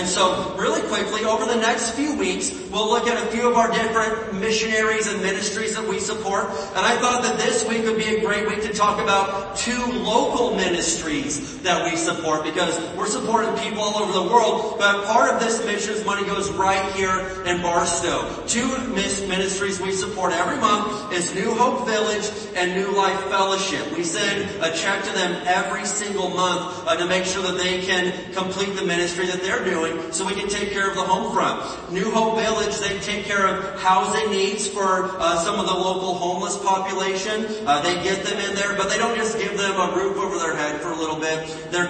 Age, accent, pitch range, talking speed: 40-59, American, 180-215 Hz, 210 wpm